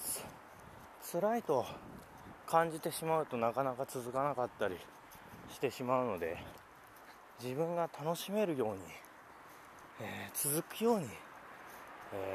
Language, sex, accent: Japanese, male, native